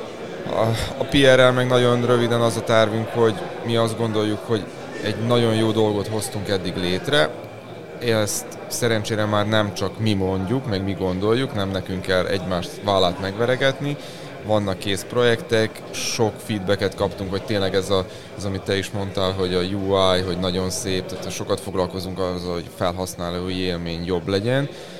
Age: 30-49